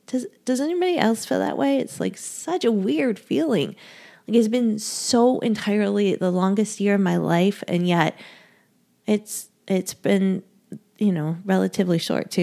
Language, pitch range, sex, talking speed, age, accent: English, 180-225 Hz, female, 165 wpm, 20-39, American